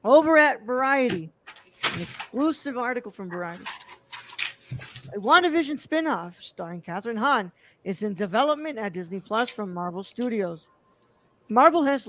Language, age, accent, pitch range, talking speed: English, 40-59, American, 185-255 Hz, 125 wpm